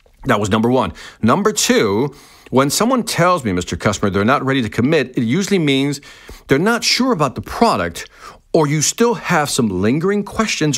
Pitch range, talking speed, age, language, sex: 125-190 Hz, 185 wpm, 50-69, English, male